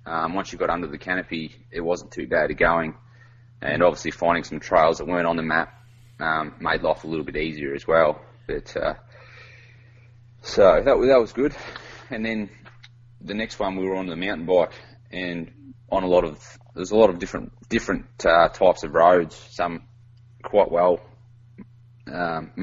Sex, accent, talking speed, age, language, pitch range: male, Australian, 185 wpm, 20-39, English, 85-120 Hz